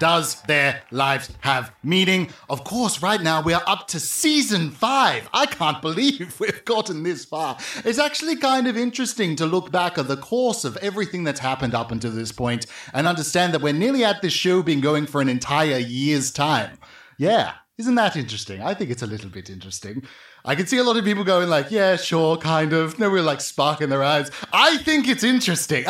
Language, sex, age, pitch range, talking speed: English, male, 30-49, 135-210 Hz, 210 wpm